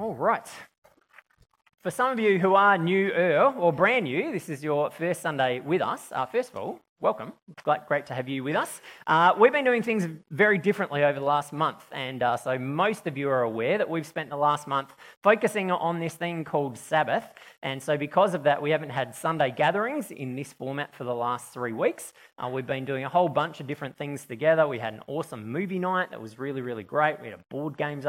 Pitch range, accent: 135-180 Hz, Australian